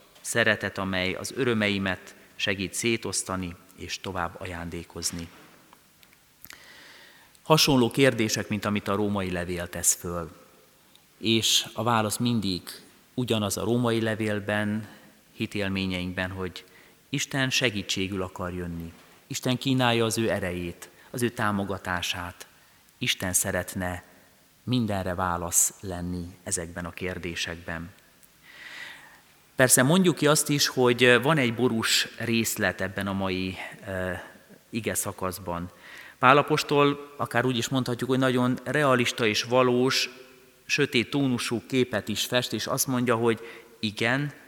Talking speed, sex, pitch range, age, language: 115 wpm, male, 95-125 Hz, 30-49, Hungarian